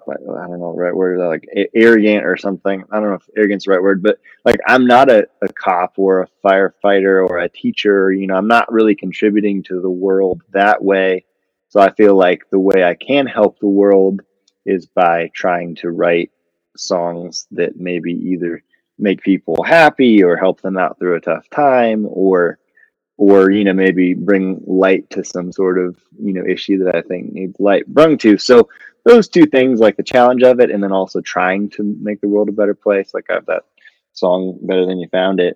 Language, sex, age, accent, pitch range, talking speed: English, male, 20-39, American, 95-105 Hz, 210 wpm